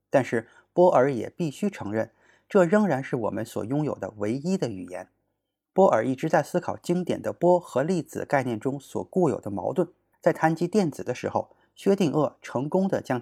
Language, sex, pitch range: Chinese, male, 130-180 Hz